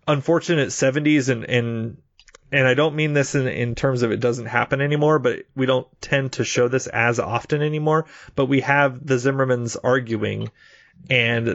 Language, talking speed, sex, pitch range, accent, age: English, 175 wpm, male, 120-150 Hz, American, 30-49